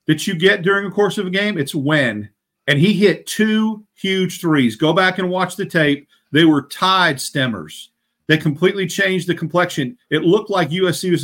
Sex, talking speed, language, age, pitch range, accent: male, 200 wpm, English, 50-69, 155-195 Hz, American